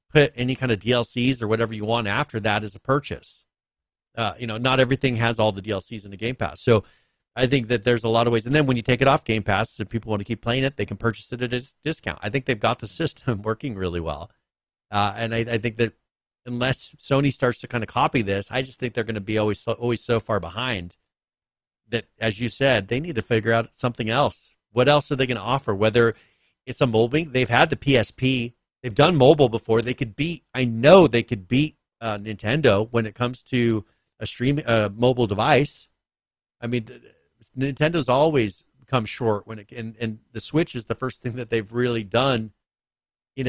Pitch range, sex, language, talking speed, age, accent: 110-130 Hz, male, English, 230 wpm, 40-59, American